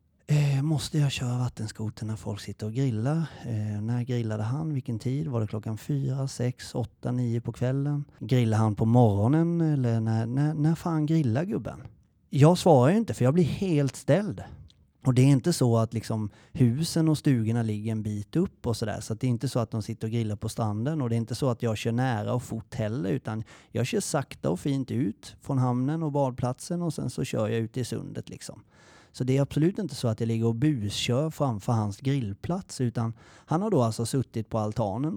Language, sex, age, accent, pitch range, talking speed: Swedish, male, 30-49, native, 115-150 Hz, 220 wpm